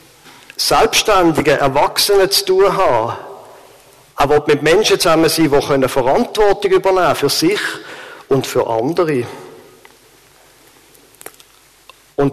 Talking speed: 90 wpm